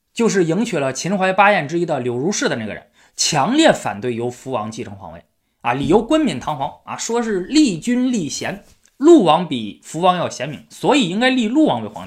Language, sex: Chinese, male